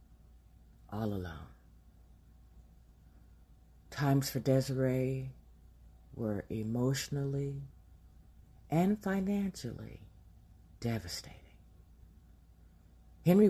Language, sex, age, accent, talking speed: English, female, 50-69, American, 50 wpm